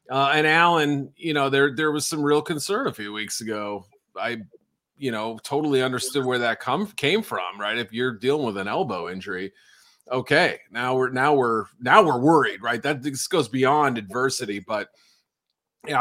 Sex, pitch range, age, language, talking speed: male, 115-145 Hz, 30-49, English, 180 wpm